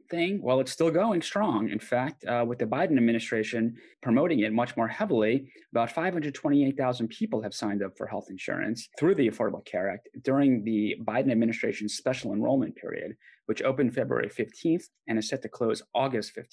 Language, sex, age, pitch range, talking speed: English, male, 30-49, 110-135 Hz, 180 wpm